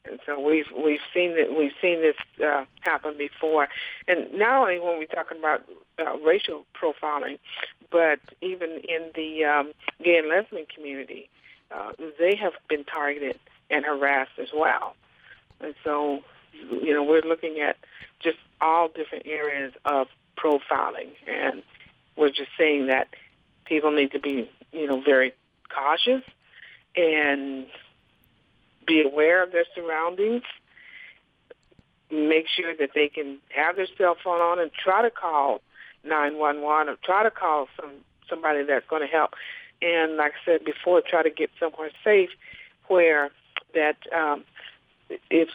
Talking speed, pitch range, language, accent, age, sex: 145 wpm, 145-170 Hz, English, American, 50-69, female